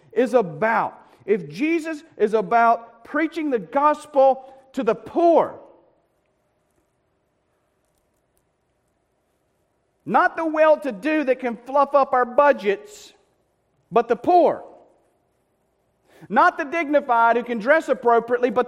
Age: 40-59